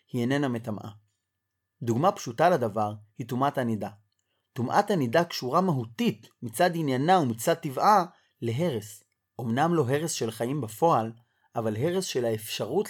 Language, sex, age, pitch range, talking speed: Hebrew, male, 30-49, 110-170 Hz, 130 wpm